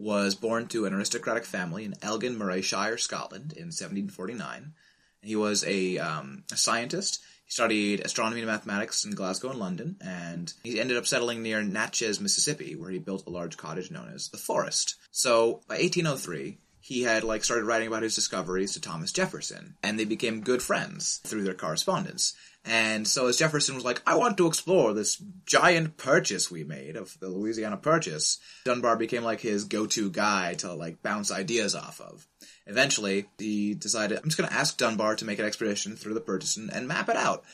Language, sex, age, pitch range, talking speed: English, male, 30-49, 105-150 Hz, 190 wpm